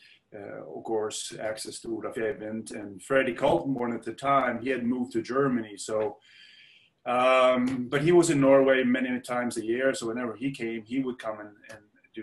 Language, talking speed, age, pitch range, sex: English, 190 wpm, 30-49, 105-120 Hz, male